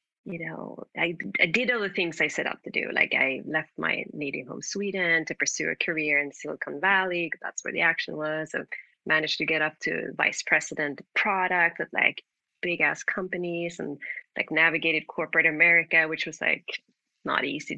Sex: female